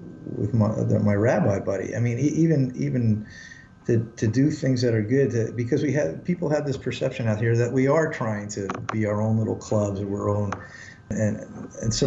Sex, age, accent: male, 50-69, American